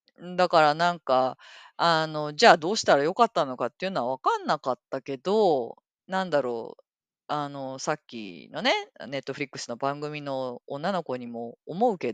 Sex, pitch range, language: female, 150-220 Hz, Japanese